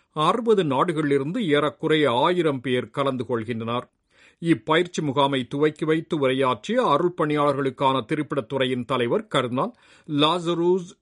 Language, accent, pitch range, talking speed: Tamil, native, 130-165 Hz, 100 wpm